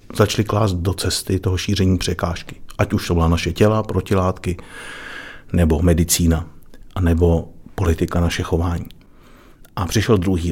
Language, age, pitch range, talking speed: Czech, 50-69, 85-105 Hz, 130 wpm